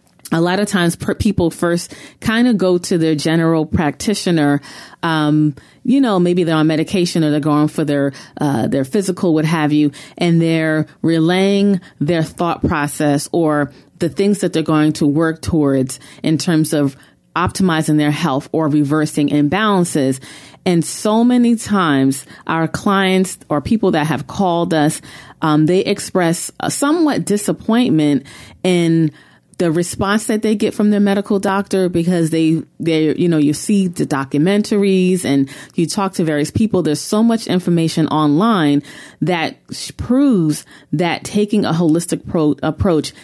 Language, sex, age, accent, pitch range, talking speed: English, female, 30-49, American, 150-185 Hz, 155 wpm